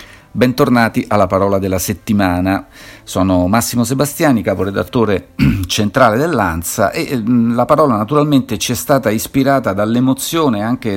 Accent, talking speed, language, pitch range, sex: native, 120 wpm, Italian, 90-115 Hz, male